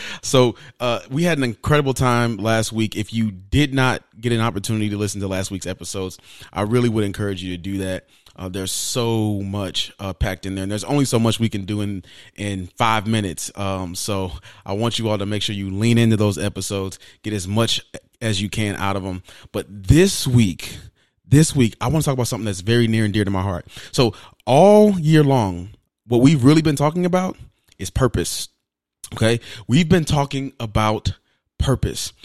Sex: male